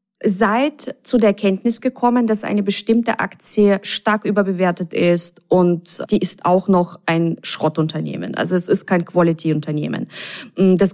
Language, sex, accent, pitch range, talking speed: German, female, German, 175-215 Hz, 135 wpm